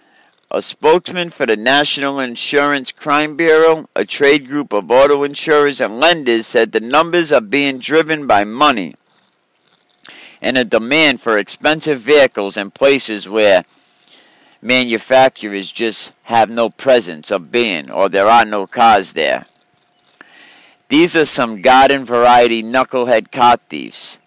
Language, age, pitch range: English, 50-69, 115-145 Hz